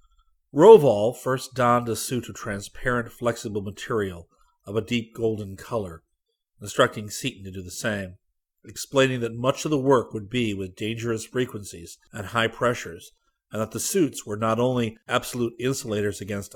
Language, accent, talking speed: English, American, 160 wpm